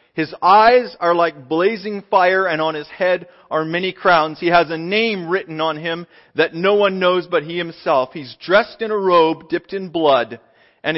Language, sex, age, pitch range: English, male, 40-59, 155-195 Hz